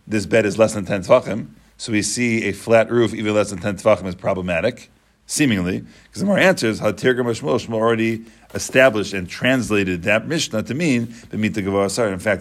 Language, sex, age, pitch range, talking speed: English, male, 40-59, 100-125 Hz, 190 wpm